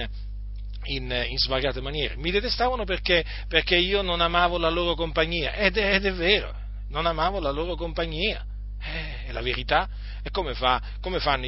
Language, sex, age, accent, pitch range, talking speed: Italian, male, 40-59, native, 115-150 Hz, 170 wpm